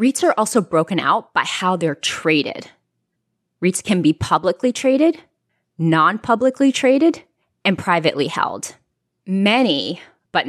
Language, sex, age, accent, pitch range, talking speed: English, female, 20-39, American, 160-230 Hz, 120 wpm